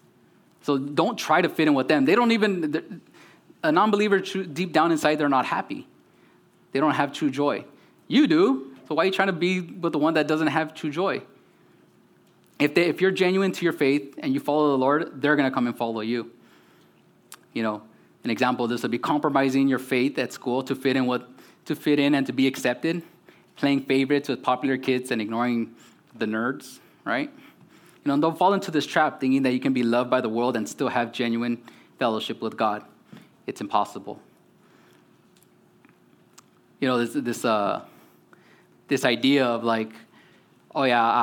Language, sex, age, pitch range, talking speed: English, male, 20-39, 120-155 Hz, 190 wpm